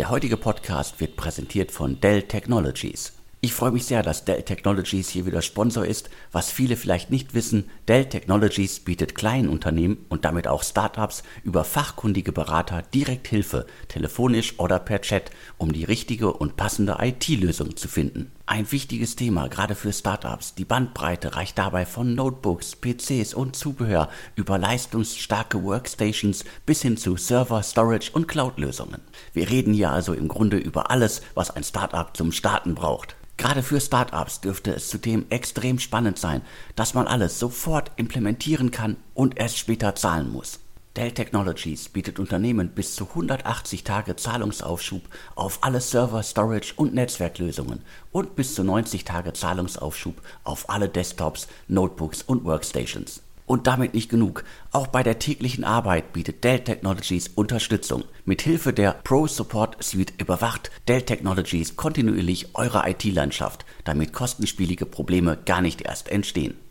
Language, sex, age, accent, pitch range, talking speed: German, male, 50-69, German, 90-120 Hz, 150 wpm